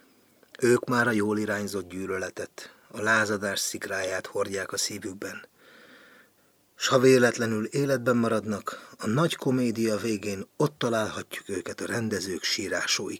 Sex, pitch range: male, 105-120 Hz